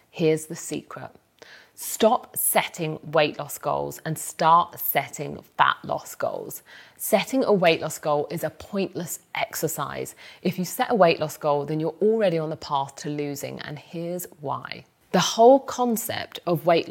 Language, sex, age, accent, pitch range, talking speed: English, female, 30-49, British, 150-190 Hz, 165 wpm